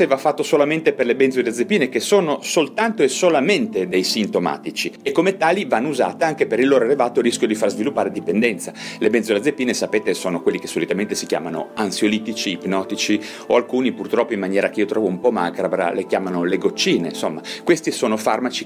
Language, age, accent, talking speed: Italian, 30-49, native, 185 wpm